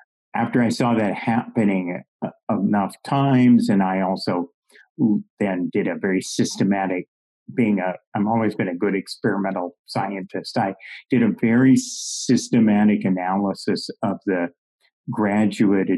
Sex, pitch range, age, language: male, 100-125 Hz, 50-69, English